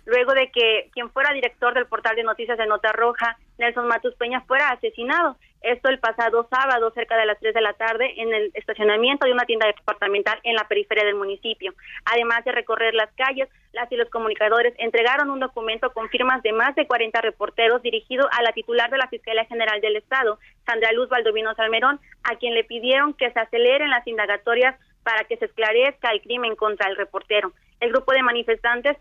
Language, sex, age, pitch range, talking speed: Spanish, female, 30-49, 220-250 Hz, 200 wpm